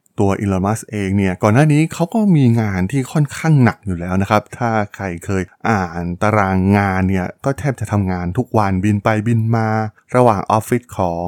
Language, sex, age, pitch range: Thai, male, 20-39, 95-125 Hz